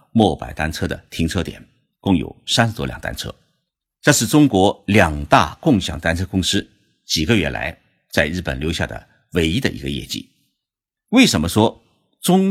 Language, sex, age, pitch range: Chinese, male, 50-69, 85-130 Hz